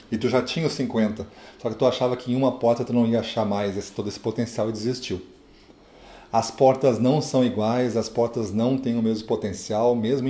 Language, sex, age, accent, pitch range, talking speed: Portuguese, male, 30-49, Brazilian, 105-130 Hz, 220 wpm